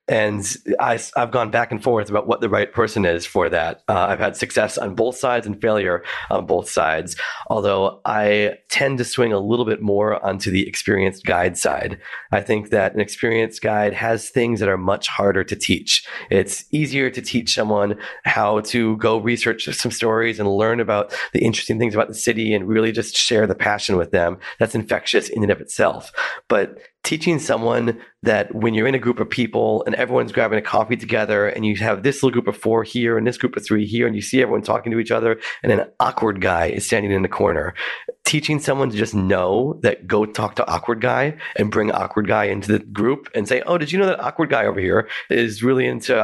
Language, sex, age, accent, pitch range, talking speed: English, male, 30-49, American, 105-120 Hz, 220 wpm